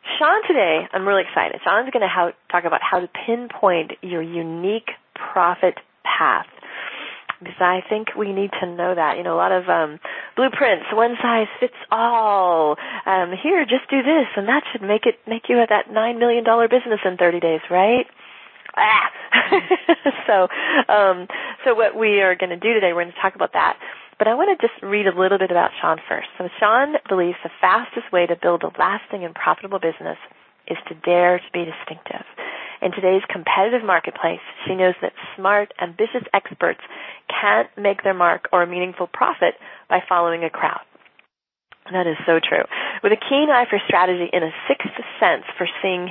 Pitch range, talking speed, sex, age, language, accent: 180-230 Hz, 185 wpm, female, 30-49, English, American